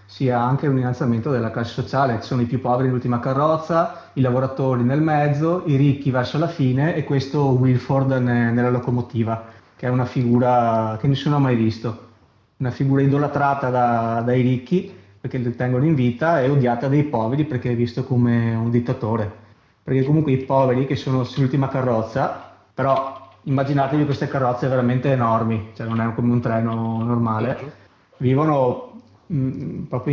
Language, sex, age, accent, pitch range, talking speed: Italian, male, 30-49, native, 120-140 Hz, 165 wpm